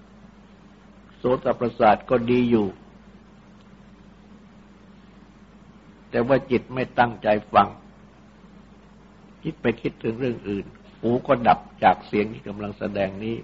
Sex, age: male, 60-79